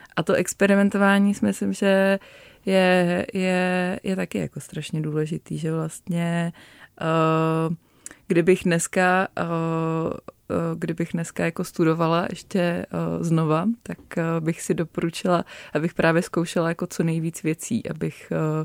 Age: 20-39